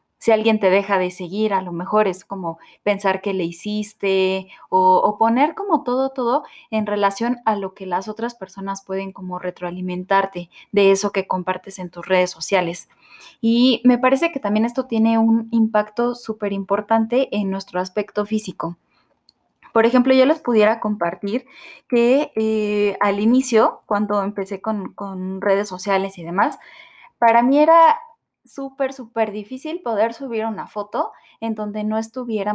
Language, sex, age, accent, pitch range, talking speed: Spanish, female, 20-39, Mexican, 195-230 Hz, 160 wpm